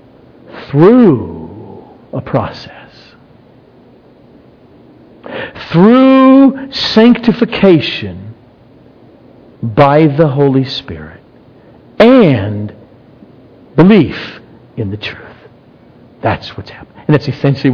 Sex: male